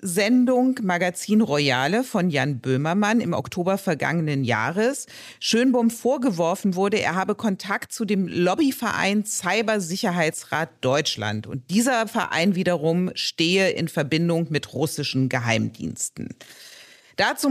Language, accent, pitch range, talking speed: German, German, 155-225 Hz, 110 wpm